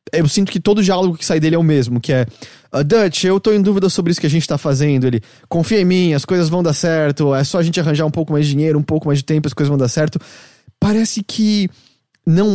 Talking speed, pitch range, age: 275 wpm, 150-200 Hz, 20-39